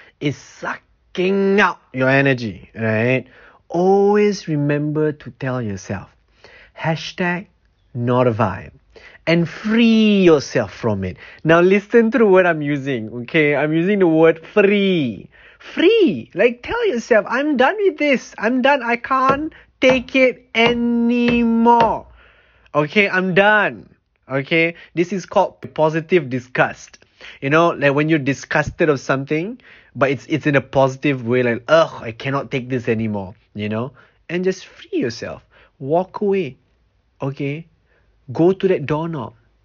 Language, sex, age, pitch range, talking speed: English, male, 30-49, 135-205 Hz, 140 wpm